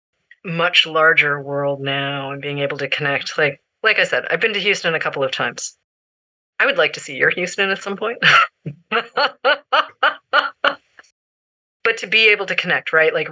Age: 30-49